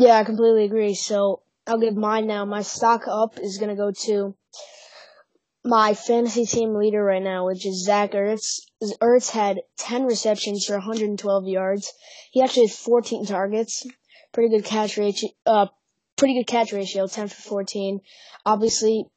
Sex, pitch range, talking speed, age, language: female, 200-225 Hz, 160 wpm, 20-39, English